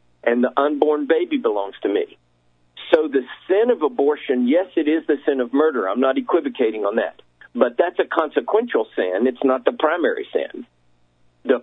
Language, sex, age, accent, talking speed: English, male, 50-69, American, 180 wpm